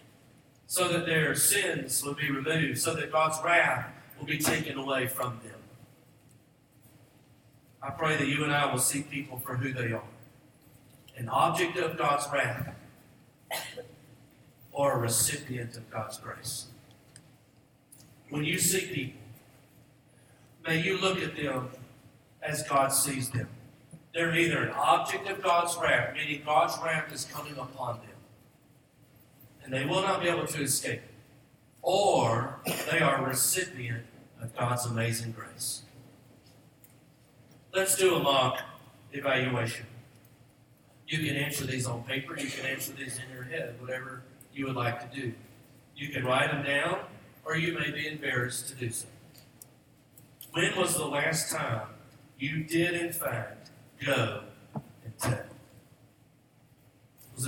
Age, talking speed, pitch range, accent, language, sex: 50-69, 140 wpm, 125-150 Hz, American, English, male